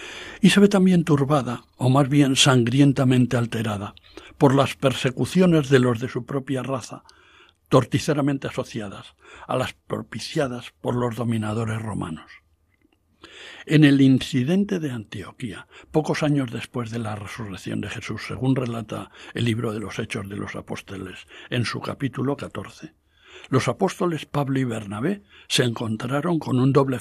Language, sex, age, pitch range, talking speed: Spanish, male, 60-79, 120-160 Hz, 145 wpm